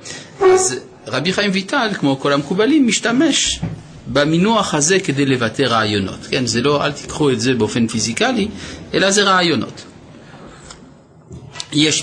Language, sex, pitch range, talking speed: Hebrew, male, 115-165 Hz, 130 wpm